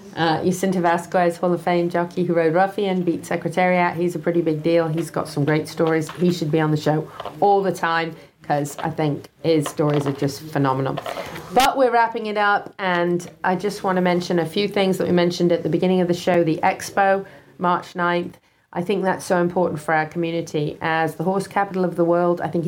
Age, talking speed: 40-59, 220 wpm